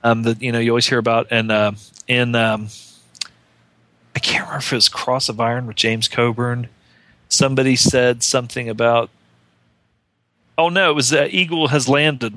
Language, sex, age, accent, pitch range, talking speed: English, male, 40-59, American, 115-135 Hz, 175 wpm